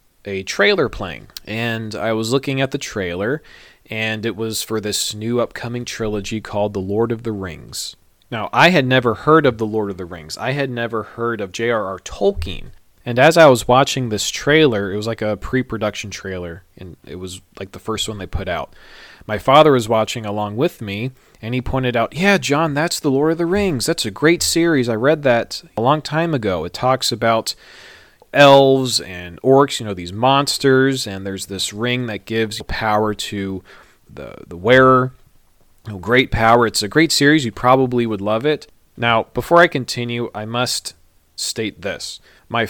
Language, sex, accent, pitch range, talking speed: English, male, American, 100-130 Hz, 190 wpm